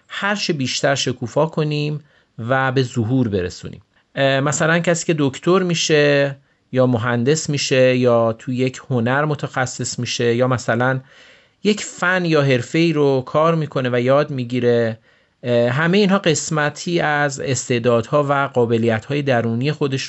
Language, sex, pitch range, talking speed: Persian, male, 125-155 Hz, 130 wpm